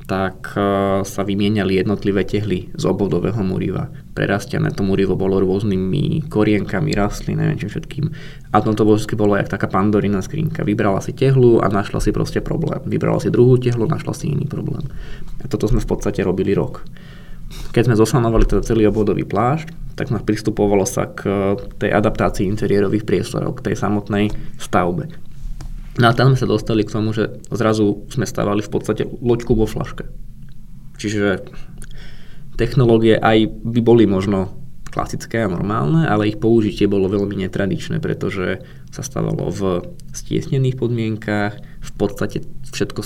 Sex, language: male, Slovak